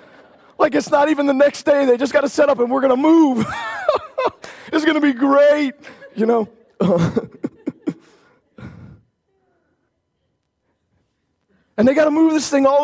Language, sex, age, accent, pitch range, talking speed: English, male, 40-59, American, 235-285 Hz, 155 wpm